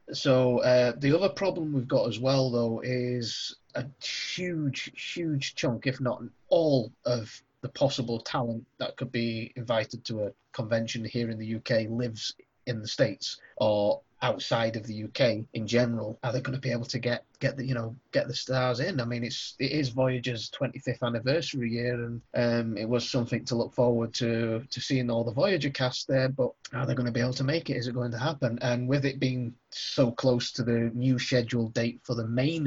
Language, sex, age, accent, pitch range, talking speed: English, male, 30-49, British, 115-130 Hz, 210 wpm